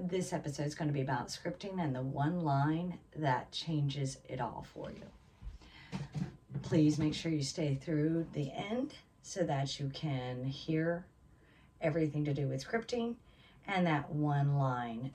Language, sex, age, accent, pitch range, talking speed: English, female, 40-59, American, 130-160 Hz, 160 wpm